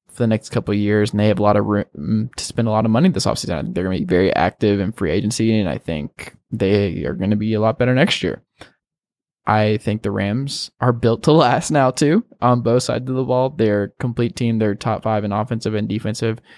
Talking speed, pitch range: 250 wpm, 105-135 Hz